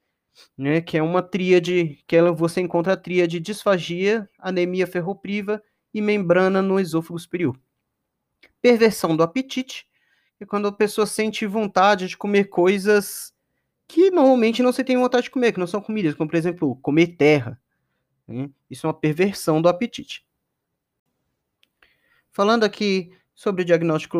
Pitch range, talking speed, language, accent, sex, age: 170-240 Hz, 145 wpm, Portuguese, Brazilian, male, 30-49